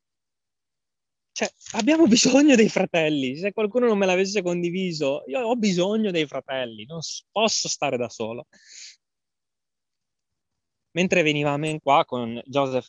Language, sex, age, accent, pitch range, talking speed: Italian, male, 20-39, native, 130-185 Hz, 125 wpm